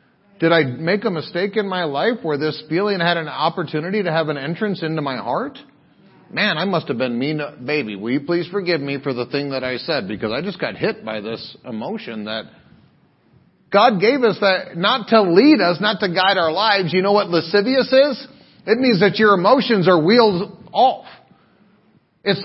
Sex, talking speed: male, 200 wpm